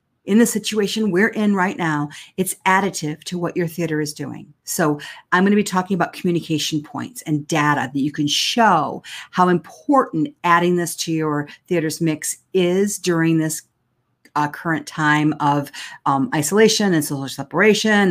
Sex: female